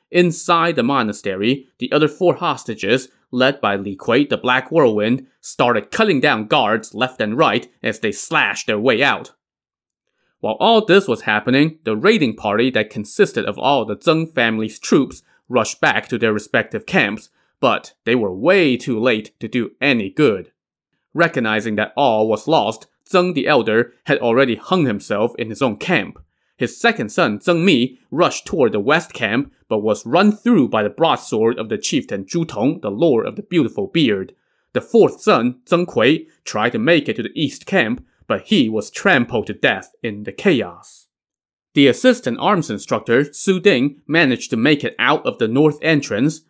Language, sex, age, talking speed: English, male, 20-39, 180 wpm